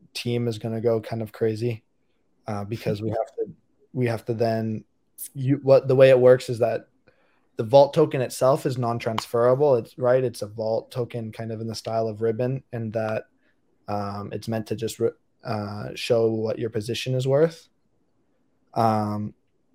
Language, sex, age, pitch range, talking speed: English, male, 20-39, 115-125 Hz, 180 wpm